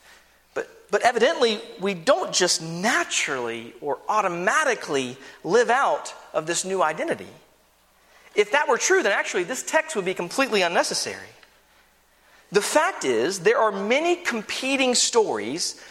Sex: male